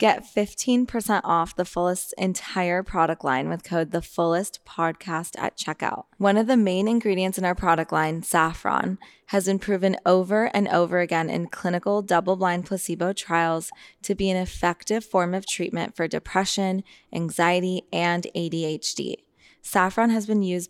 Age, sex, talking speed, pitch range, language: 20-39, female, 150 wpm, 165-195 Hz, English